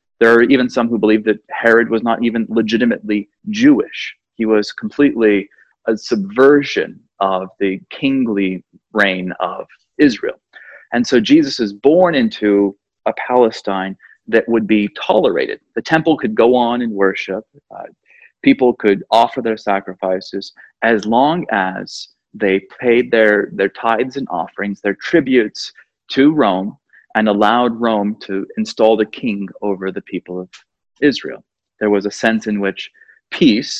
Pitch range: 100-135 Hz